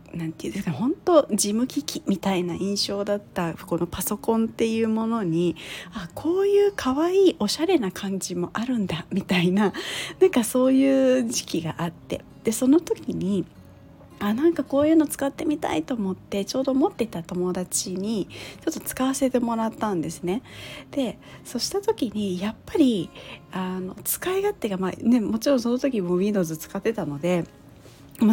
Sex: female